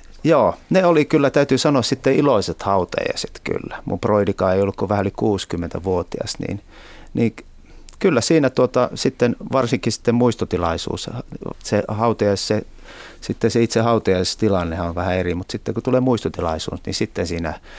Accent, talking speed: native, 140 wpm